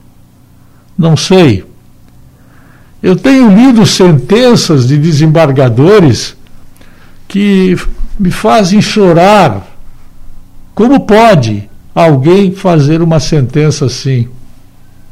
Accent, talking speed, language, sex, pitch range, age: Brazilian, 75 wpm, Portuguese, male, 130-185 Hz, 60-79